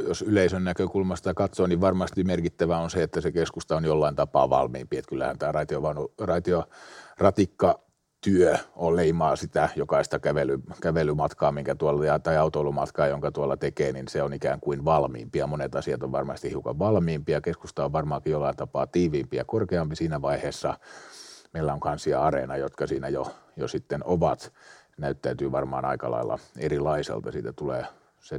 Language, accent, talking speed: English, Finnish, 155 wpm